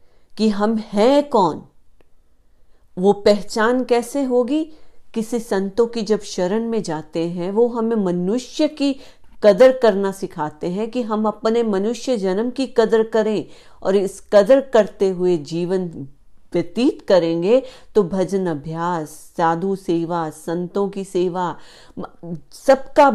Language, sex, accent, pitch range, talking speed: Hindi, female, native, 175-240 Hz, 125 wpm